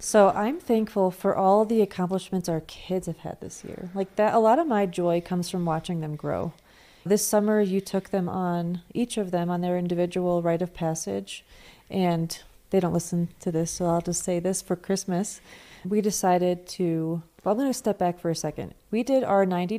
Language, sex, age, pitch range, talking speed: English, female, 30-49, 170-200 Hz, 205 wpm